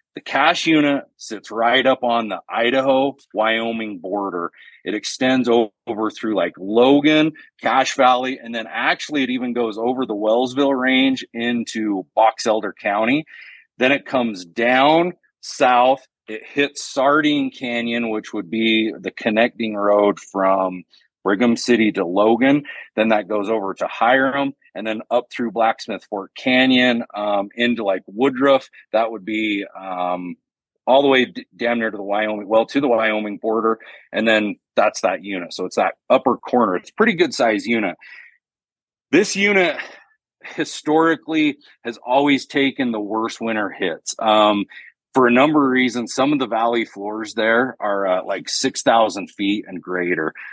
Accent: American